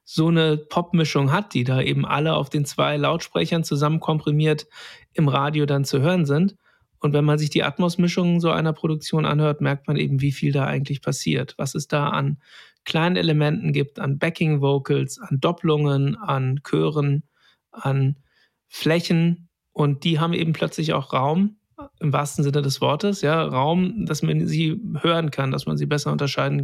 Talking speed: 175 wpm